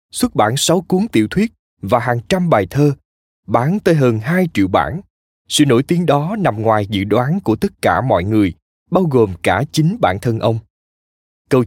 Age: 20-39